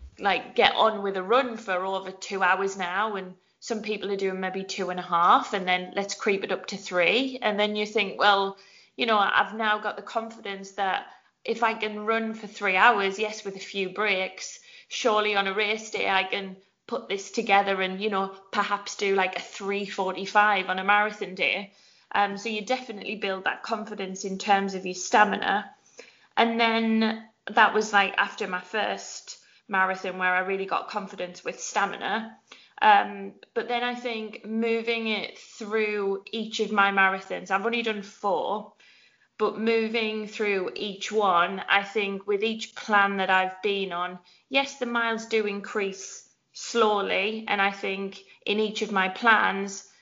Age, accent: 20-39, British